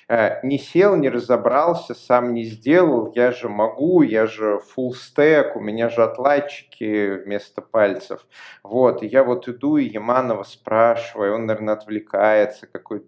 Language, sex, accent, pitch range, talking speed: Russian, male, native, 105-125 Hz, 150 wpm